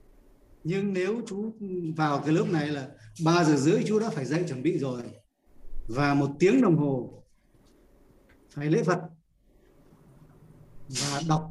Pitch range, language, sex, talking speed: 145-175 Hz, Vietnamese, male, 145 wpm